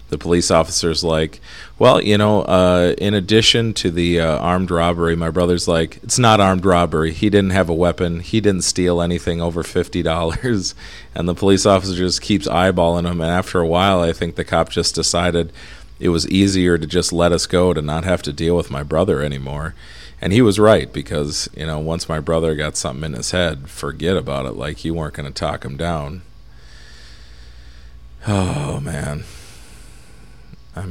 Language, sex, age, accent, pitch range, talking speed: English, male, 40-59, American, 70-90 Hz, 190 wpm